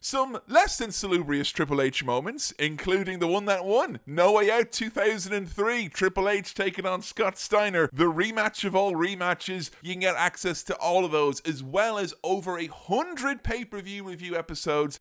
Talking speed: 175 wpm